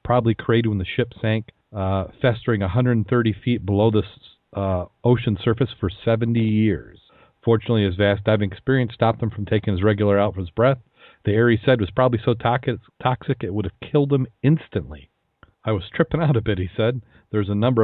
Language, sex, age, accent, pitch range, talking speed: English, male, 40-59, American, 105-120 Hz, 200 wpm